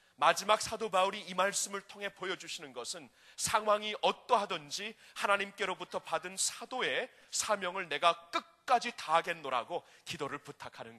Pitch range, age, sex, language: 175-220 Hz, 30-49, male, Korean